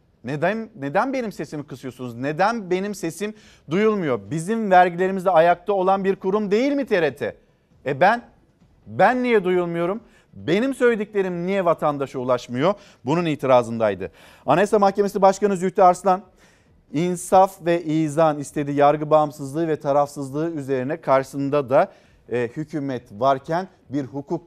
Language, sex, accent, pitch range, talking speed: Turkish, male, native, 140-180 Hz, 125 wpm